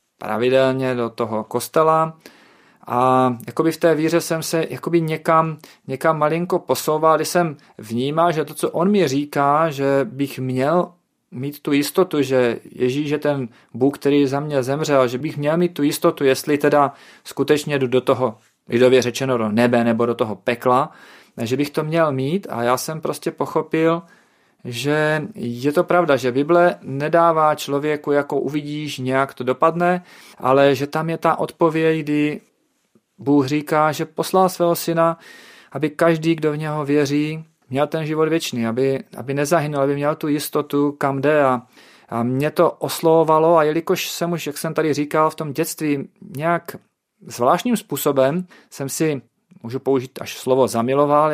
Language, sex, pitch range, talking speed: Czech, male, 130-160 Hz, 165 wpm